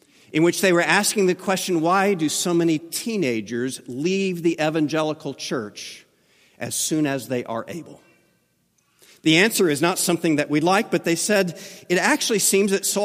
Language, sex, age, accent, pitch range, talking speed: English, male, 50-69, American, 155-205 Hz, 175 wpm